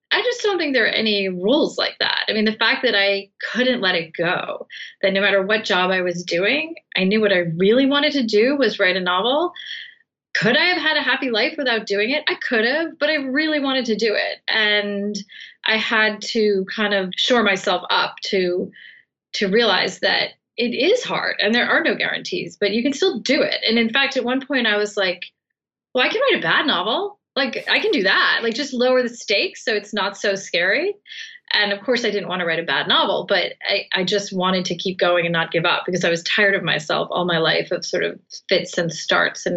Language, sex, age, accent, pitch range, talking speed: English, female, 30-49, American, 185-255 Hz, 240 wpm